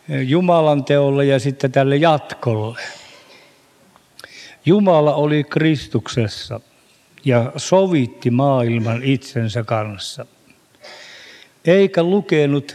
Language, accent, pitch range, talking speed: Finnish, native, 120-150 Hz, 75 wpm